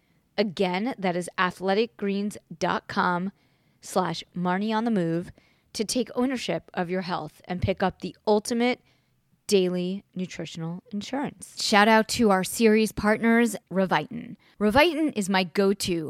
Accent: American